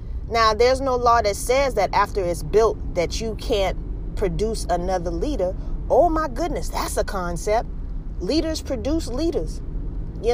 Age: 30-49